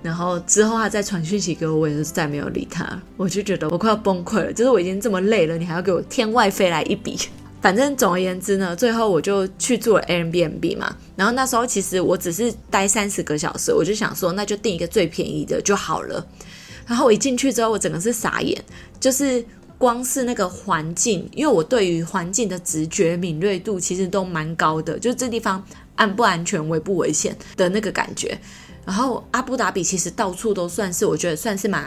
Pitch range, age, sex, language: 175-230 Hz, 20-39, female, Chinese